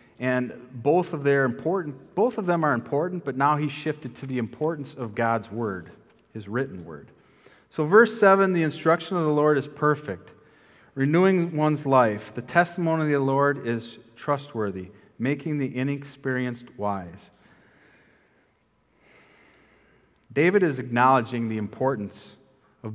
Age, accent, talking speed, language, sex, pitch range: 40-59, American, 140 wpm, English, male, 115-145 Hz